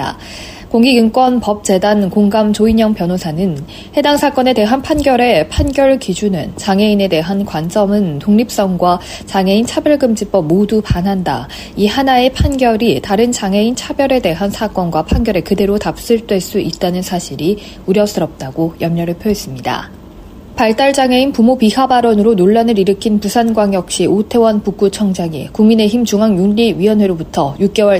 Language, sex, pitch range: Korean, female, 185-230 Hz